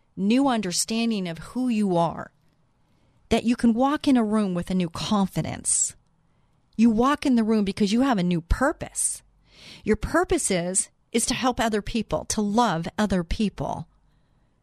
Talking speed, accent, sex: 165 wpm, American, female